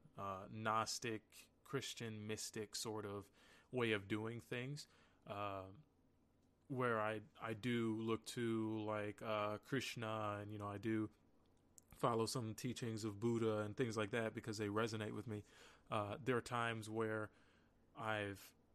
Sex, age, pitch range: male, 20-39, 105-120 Hz